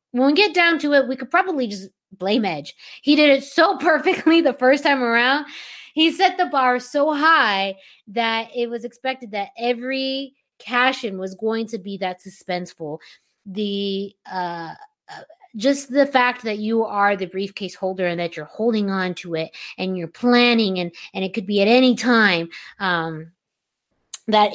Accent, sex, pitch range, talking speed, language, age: American, female, 195-265 Hz, 175 wpm, English, 20-39